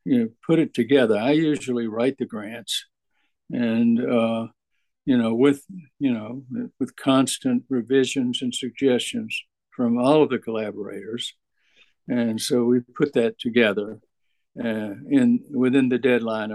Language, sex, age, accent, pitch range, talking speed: English, male, 60-79, American, 120-150 Hz, 140 wpm